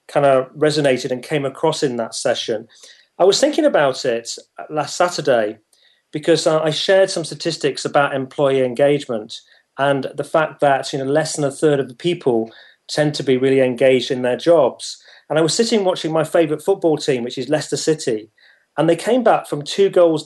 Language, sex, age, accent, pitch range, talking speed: English, male, 40-59, British, 135-160 Hz, 195 wpm